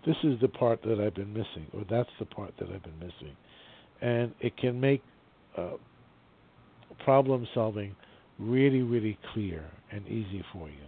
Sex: male